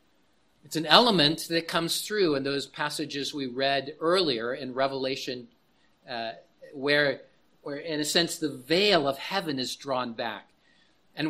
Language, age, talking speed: English, 40-59, 150 wpm